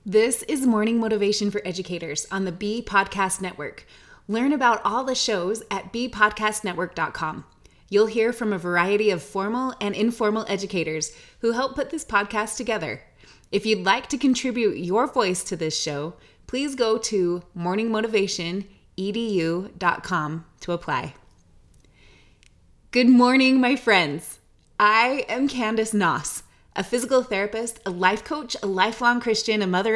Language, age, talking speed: English, 20-39, 140 wpm